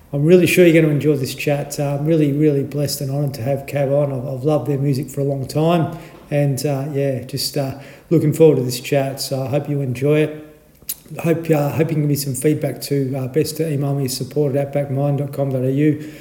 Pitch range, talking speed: 140-155 Hz, 235 wpm